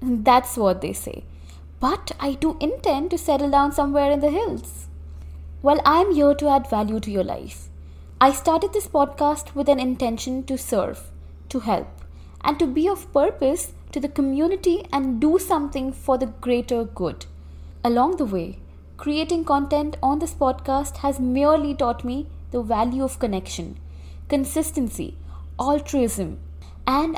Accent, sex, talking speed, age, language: Indian, female, 150 wpm, 20-39, English